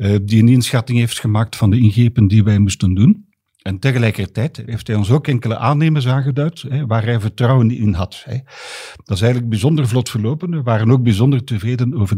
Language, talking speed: Dutch, 185 wpm